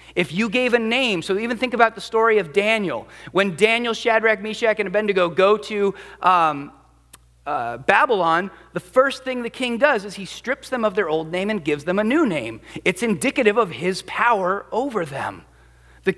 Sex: male